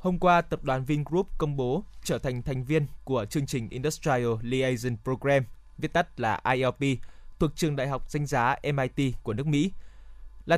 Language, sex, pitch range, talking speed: Vietnamese, male, 130-165 Hz, 180 wpm